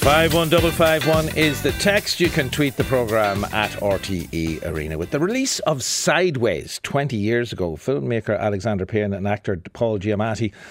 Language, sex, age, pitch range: English, male, 60-79, 95-130 Hz